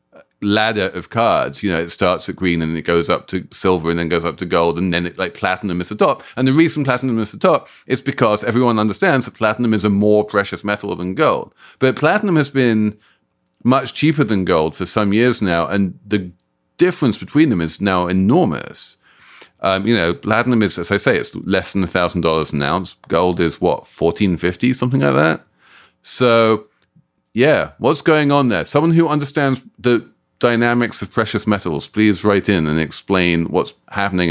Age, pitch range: 40-59, 90-135 Hz